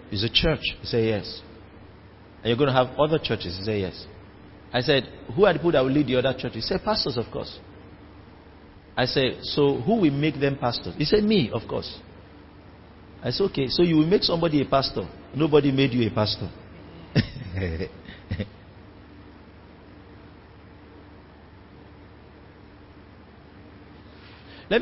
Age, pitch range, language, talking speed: 50-69, 95-145 Hz, English, 150 wpm